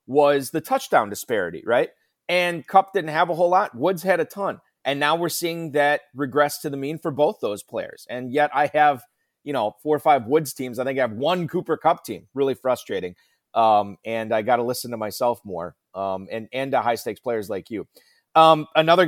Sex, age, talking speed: male, 30-49, 220 wpm